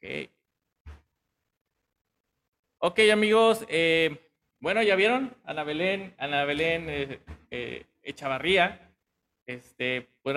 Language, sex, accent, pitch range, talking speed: Spanish, male, Mexican, 135-185 Hz, 80 wpm